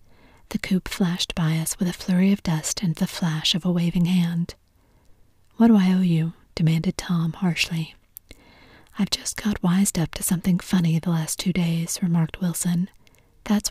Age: 40-59